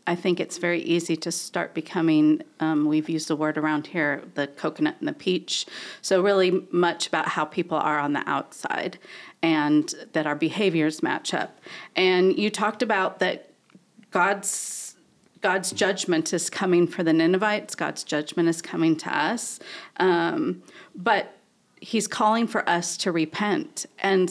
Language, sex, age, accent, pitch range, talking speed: English, female, 40-59, American, 170-210 Hz, 160 wpm